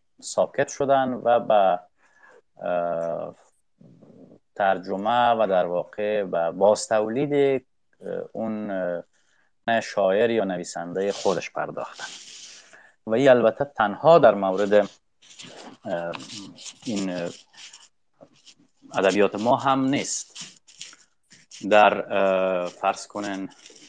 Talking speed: 80 wpm